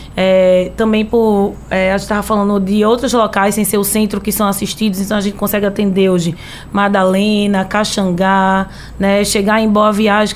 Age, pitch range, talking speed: 20-39, 200-225 Hz, 180 wpm